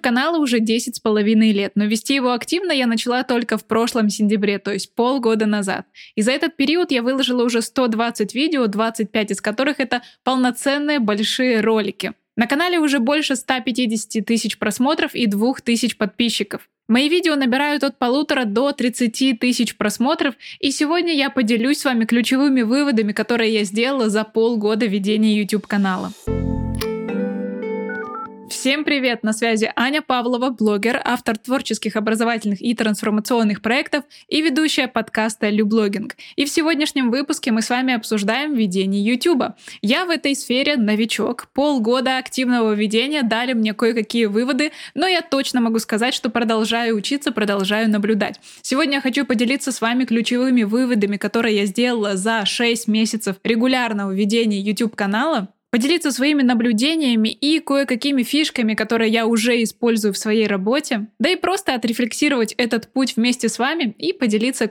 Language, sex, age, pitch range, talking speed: Russian, female, 20-39, 220-265 Hz, 150 wpm